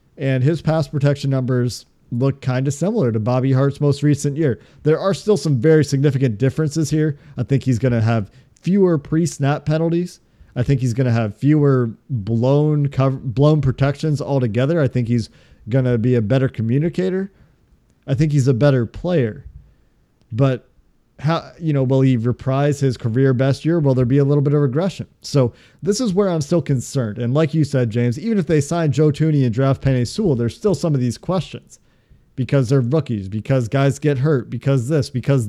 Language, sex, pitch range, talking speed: English, male, 125-155 Hz, 195 wpm